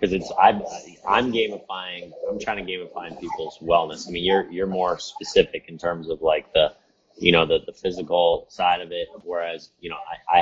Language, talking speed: English, 205 wpm